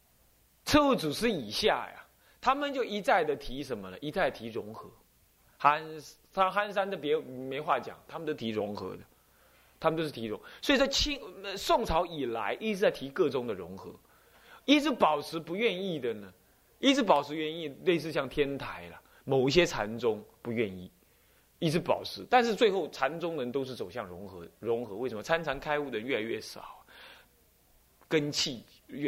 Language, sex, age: Chinese, male, 20-39